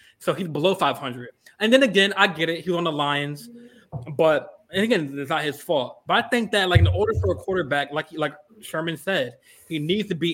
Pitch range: 130-195 Hz